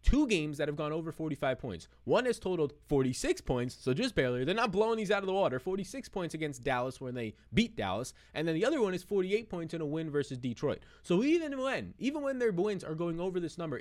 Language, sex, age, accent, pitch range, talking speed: English, male, 20-39, American, 135-185 Hz, 250 wpm